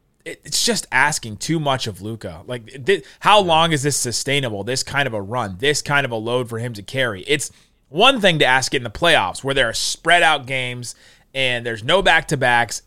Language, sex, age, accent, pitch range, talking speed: English, male, 30-49, American, 125-170 Hz, 230 wpm